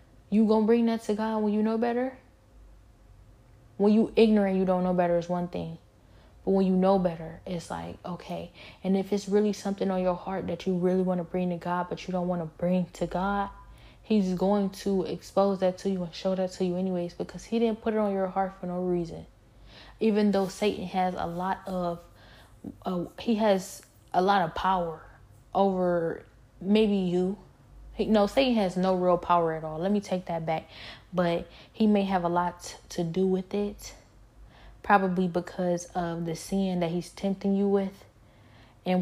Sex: female